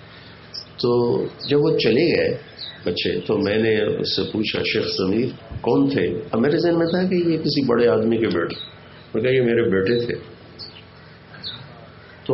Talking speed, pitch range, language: 125 wpm, 95-135 Hz, English